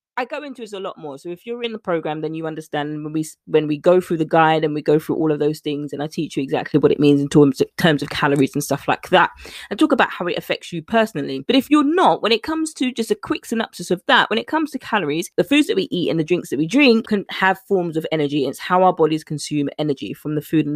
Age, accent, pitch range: 20-39, British, 155-220 Hz